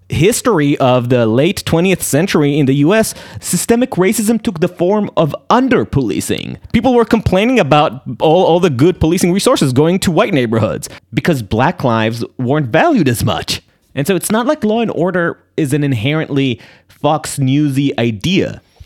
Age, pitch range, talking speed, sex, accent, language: 30-49, 110-160 Hz, 165 wpm, male, American, English